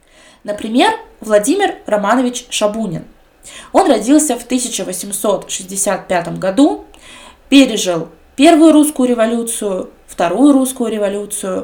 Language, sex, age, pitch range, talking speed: Russian, female, 20-39, 195-270 Hz, 80 wpm